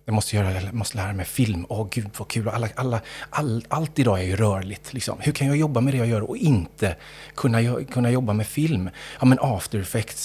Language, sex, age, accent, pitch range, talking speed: Swedish, male, 30-49, native, 110-135 Hz, 240 wpm